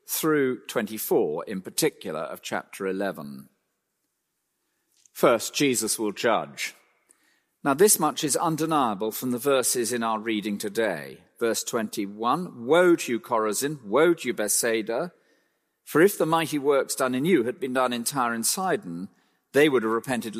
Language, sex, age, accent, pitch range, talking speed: English, male, 40-59, British, 110-165 Hz, 155 wpm